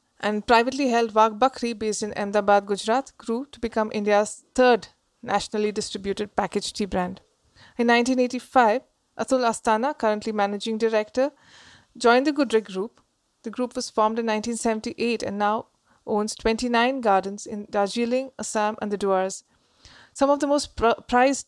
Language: English